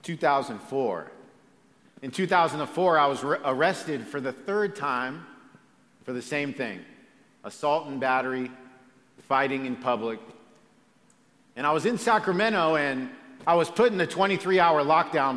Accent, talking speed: American, 130 wpm